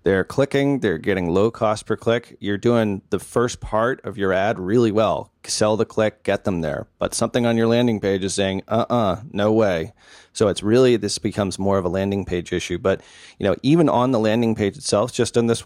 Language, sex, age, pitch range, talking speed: English, male, 30-49, 100-120 Hz, 220 wpm